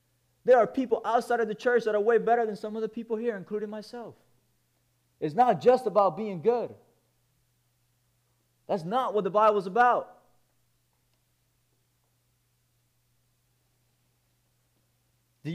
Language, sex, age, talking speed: English, male, 20-39, 125 wpm